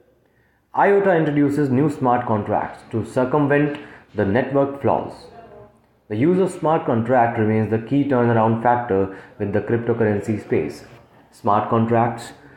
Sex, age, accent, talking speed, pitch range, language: male, 30-49, Indian, 125 wpm, 115-140 Hz, English